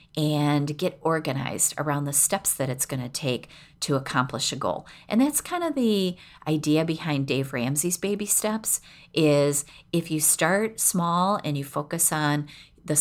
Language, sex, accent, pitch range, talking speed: English, female, American, 145-175 Hz, 165 wpm